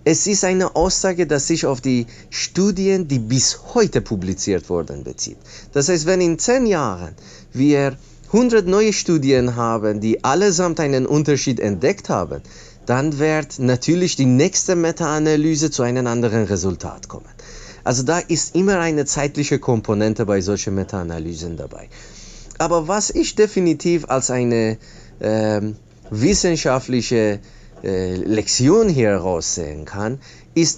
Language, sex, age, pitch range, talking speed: German, male, 30-49, 110-160 Hz, 130 wpm